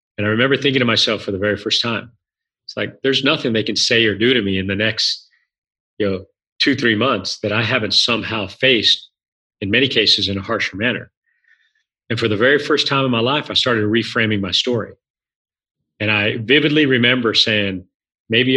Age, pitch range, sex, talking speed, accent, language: 40-59, 105-130 Hz, male, 200 wpm, American, English